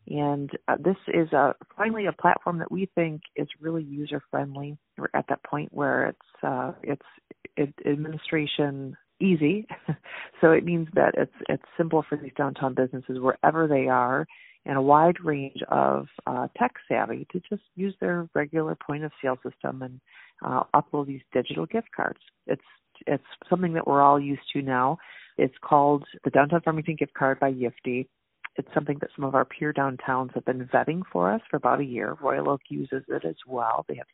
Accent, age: American, 40-59